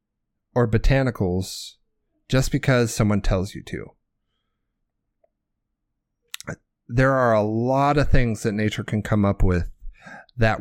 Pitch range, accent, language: 100-125 Hz, American, English